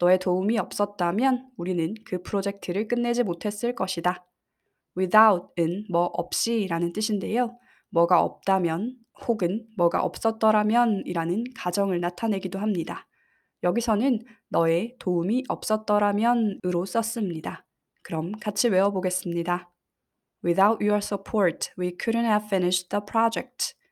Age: 20-39